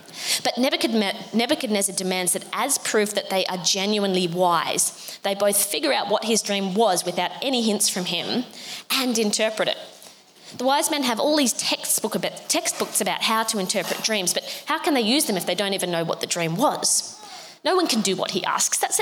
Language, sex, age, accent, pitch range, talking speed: English, female, 20-39, Australian, 180-240 Hz, 195 wpm